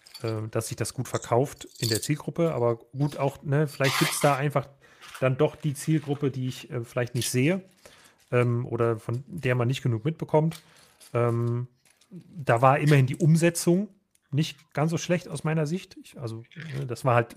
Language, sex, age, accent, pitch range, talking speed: German, male, 30-49, German, 120-155 Hz, 185 wpm